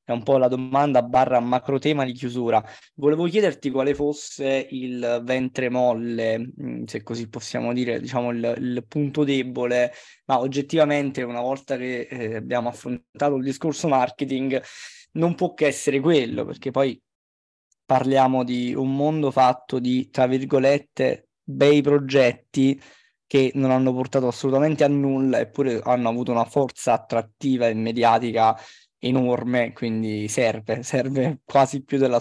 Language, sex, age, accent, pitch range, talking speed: Italian, male, 20-39, native, 120-140 Hz, 140 wpm